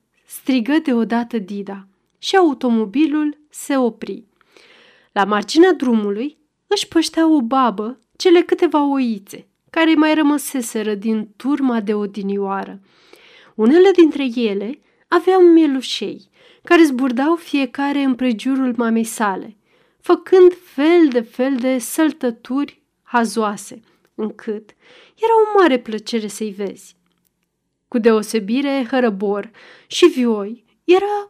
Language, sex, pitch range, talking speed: Romanian, female, 225-320 Hz, 105 wpm